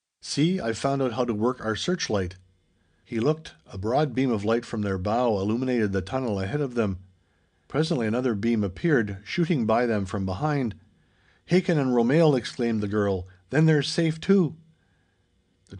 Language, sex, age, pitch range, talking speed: English, male, 50-69, 100-140 Hz, 170 wpm